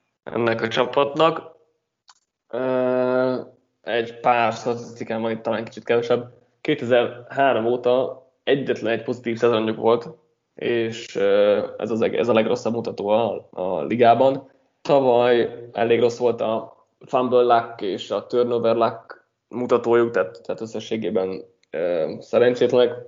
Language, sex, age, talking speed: Hungarian, male, 20-39, 115 wpm